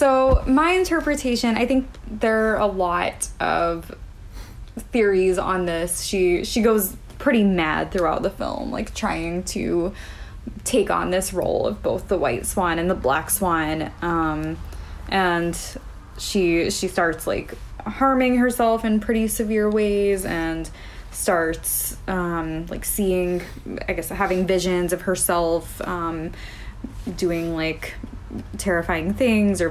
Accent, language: American, English